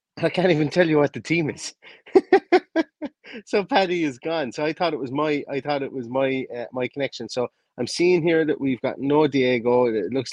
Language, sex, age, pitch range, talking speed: English, male, 30-49, 120-155 Hz, 220 wpm